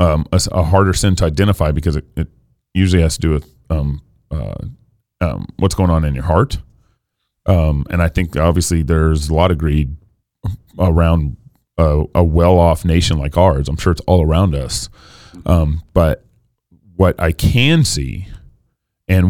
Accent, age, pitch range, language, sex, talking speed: American, 30-49, 85-110 Hz, English, male, 170 wpm